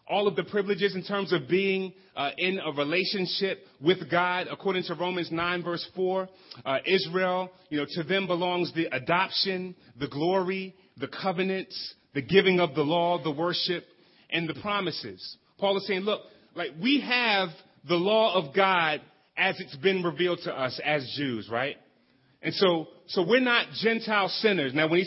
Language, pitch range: English, 170-200 Hz